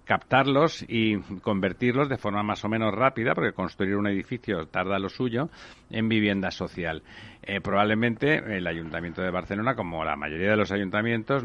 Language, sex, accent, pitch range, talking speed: Spanish, male, Spanish, 95-110 Hz, 160 wpm